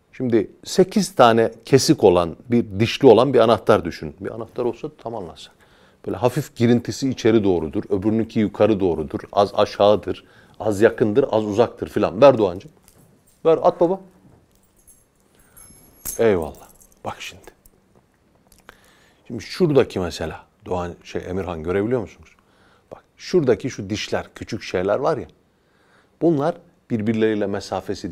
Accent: native